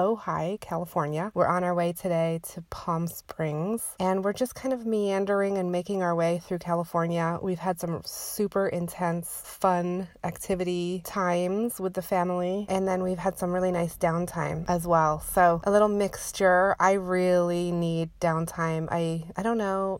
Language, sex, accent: English, female, American